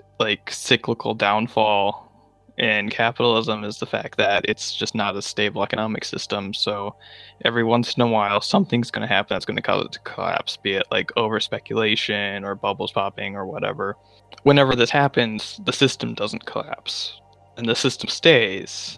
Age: 20-39